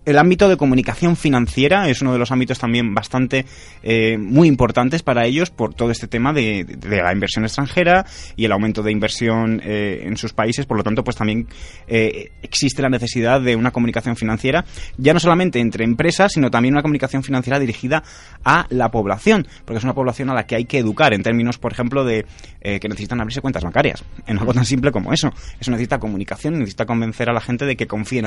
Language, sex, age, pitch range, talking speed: Spanish, male, 20-39, 110-140 Hz, 210 wpm